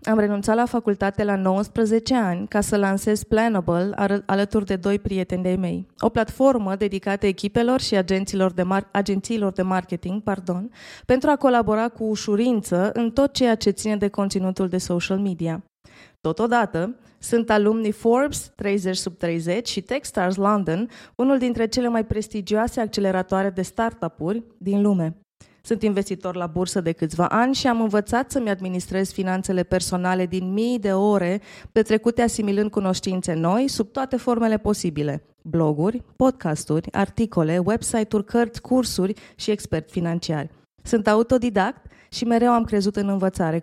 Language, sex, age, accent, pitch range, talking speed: Romanian, female, 20-39, native, 185-225 Hz, 145 wpm